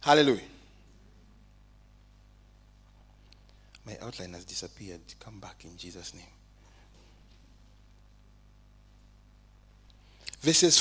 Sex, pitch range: male, 105-155 Hz